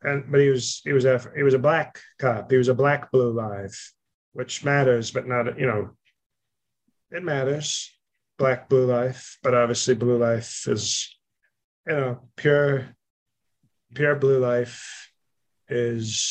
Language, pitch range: English, 120-145 Hz